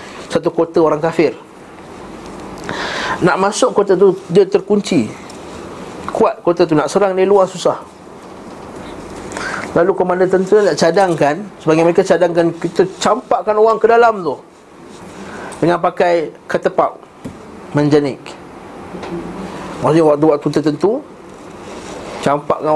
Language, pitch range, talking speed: Malay, 160-215 Hz, 110 wpm